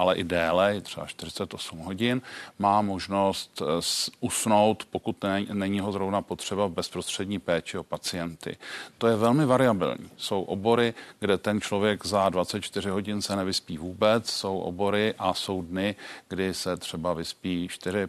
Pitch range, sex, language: 95-110 Hz, male, Czech